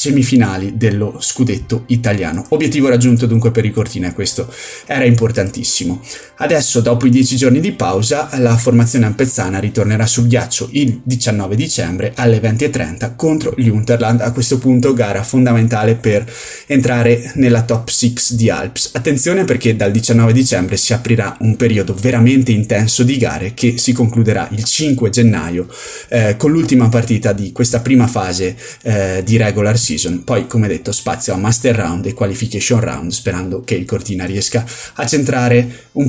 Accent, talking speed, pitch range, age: native, 160 wpm, 110-125 Hz, 20-39